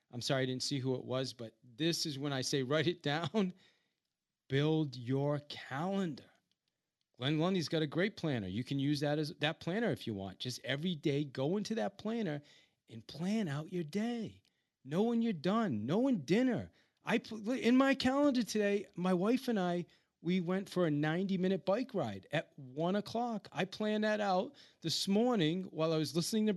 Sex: male